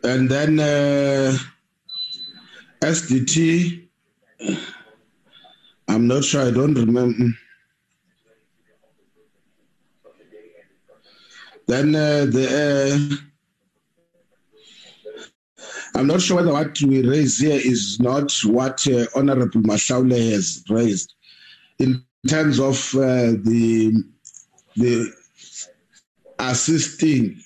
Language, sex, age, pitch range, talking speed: English, male, 50-69, 125-165 Hz, 85 wpm